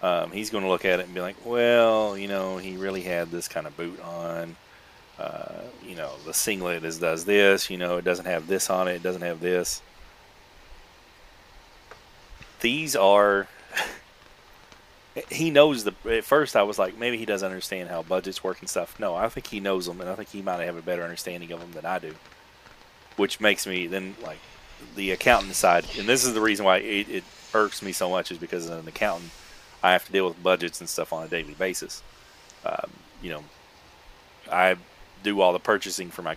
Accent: American